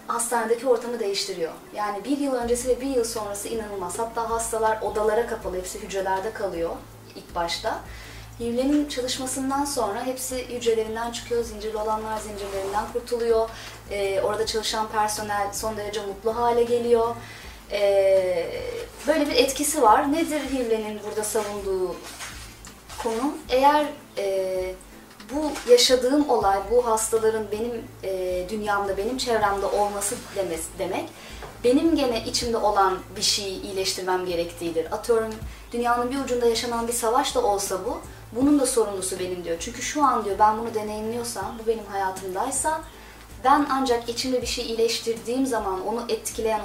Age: 30-49